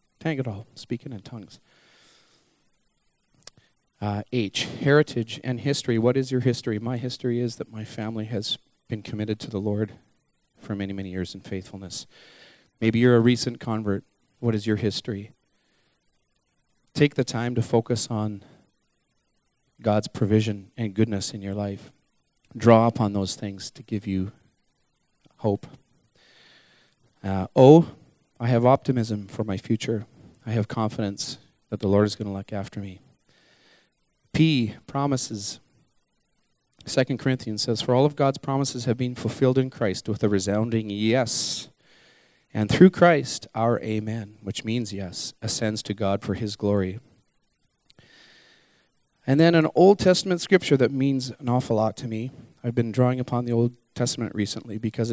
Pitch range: 105-125 Hz